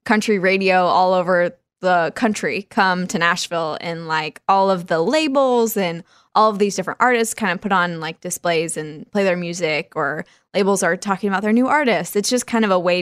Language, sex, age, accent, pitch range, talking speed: English, female, 10-29, American, 185-245 Hz, 205 wpm